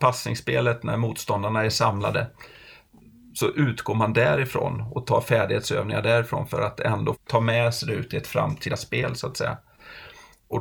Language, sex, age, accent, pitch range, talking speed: Swedish, male, 30-49, native, 115-145 Hz, 165 wpm